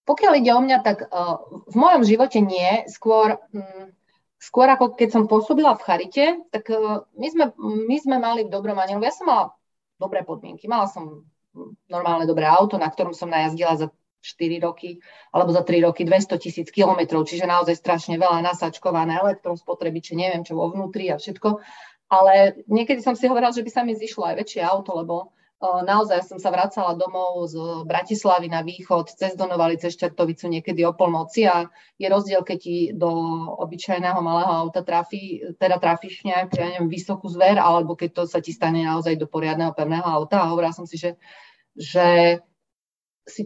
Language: Slovak